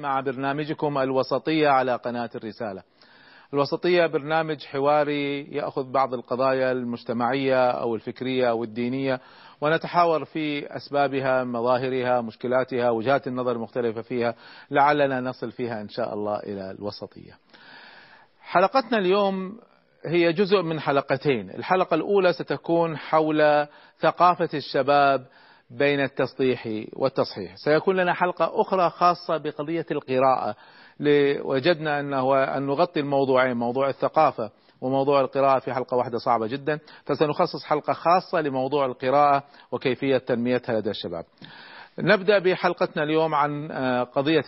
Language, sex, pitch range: Arabic, male, 125-155 Hz